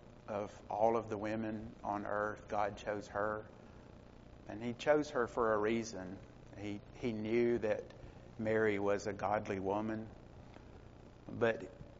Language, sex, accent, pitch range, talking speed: English, male, American, 100-115 Hz, 135 wpm